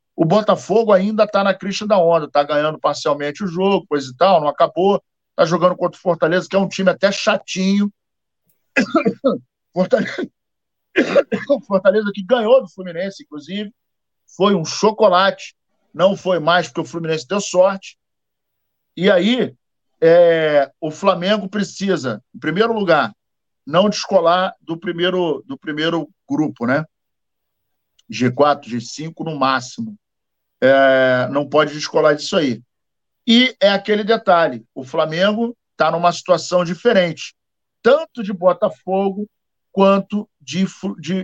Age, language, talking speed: 50-69, Portuguese, 130 wpm